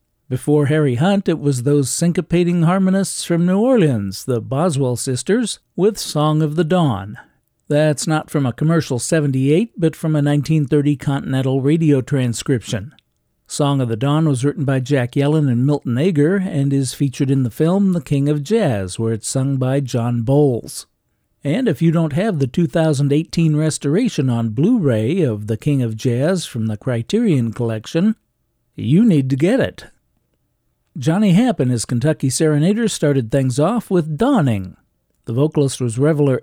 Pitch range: 130-165 Hz